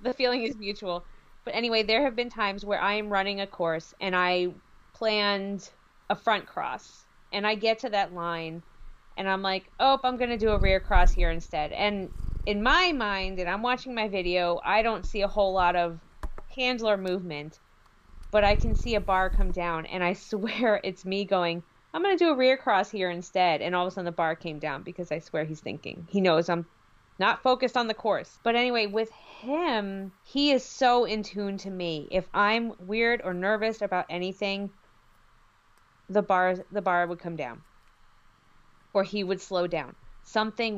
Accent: American